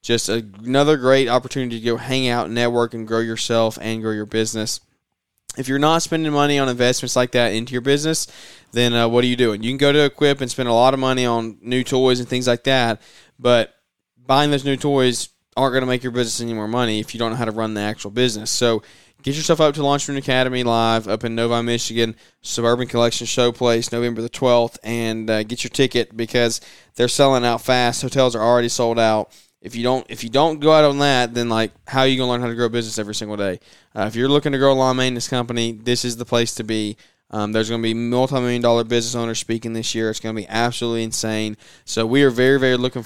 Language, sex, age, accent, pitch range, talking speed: English, male, 20-39, American, 115-130 Hz, 245 wpm